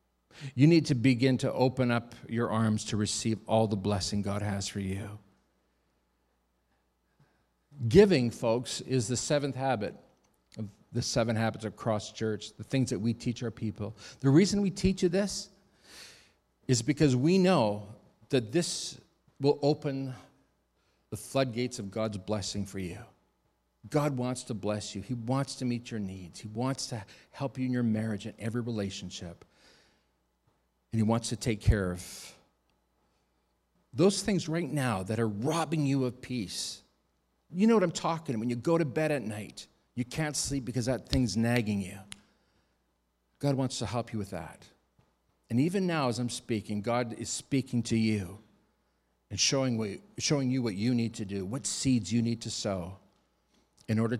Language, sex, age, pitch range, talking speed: English, male, 50-69, 100-130 Hz, 170 wpm